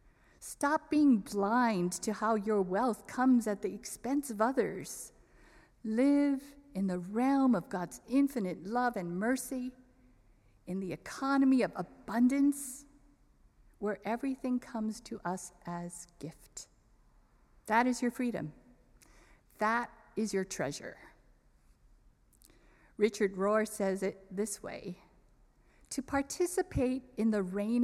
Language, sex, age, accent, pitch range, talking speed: English, female, 50-69, American, 190-255 Hz, 115 wpm